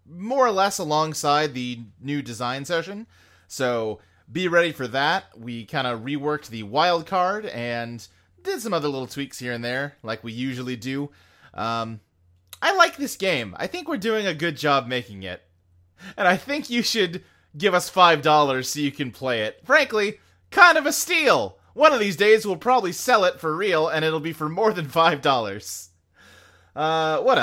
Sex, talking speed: male, 185 wpm